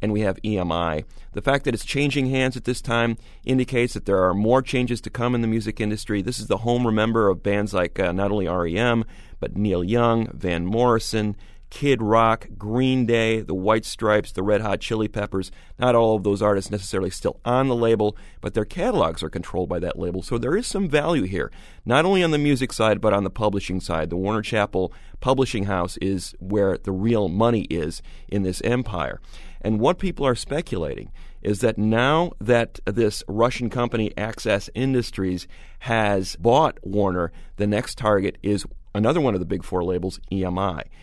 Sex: male